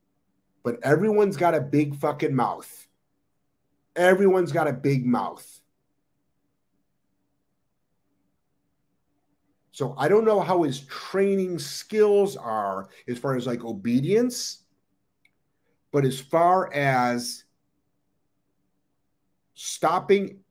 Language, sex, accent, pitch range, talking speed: English, male, American, 120-175 Hz, 90 wpm